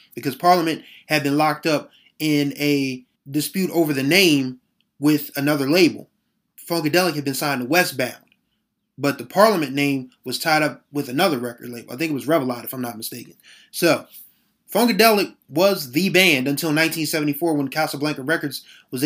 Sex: male